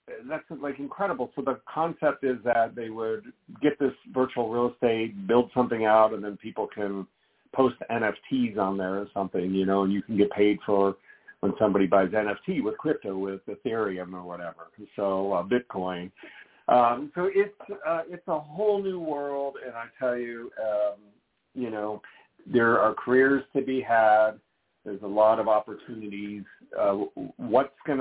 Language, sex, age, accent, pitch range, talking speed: English, male, 50-69, American, 100-130 Hz, 170 wpm